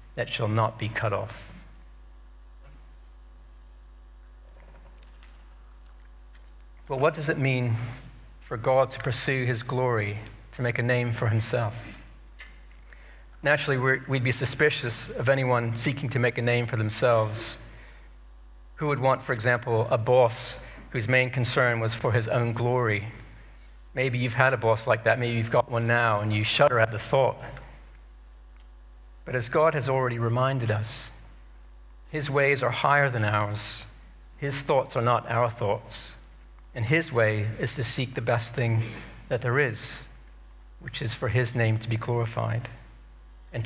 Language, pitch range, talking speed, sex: English, 105-125 Hz, 150 wpm, male